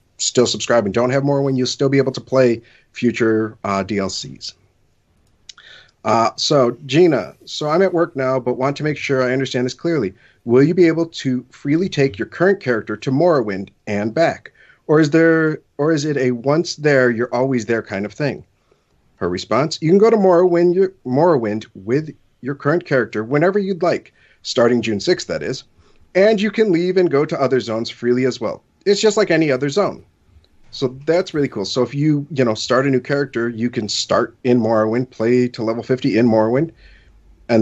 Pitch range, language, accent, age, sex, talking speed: 110-150 Hz, English, American, 40-59, male, 200 wpm